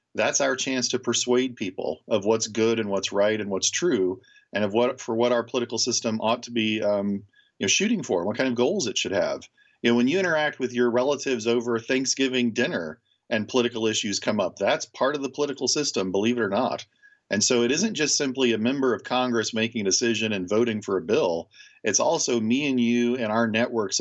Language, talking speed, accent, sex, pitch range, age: English, 225 wpm, American, male, 110-130 Hz, 40-59